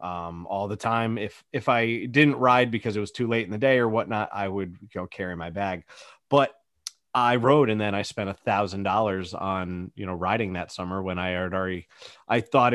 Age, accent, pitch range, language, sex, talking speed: 30-49, American, 100-130 Hz, English, male, 215 wpm